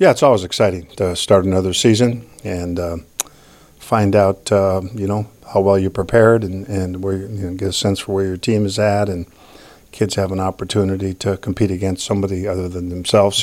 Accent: American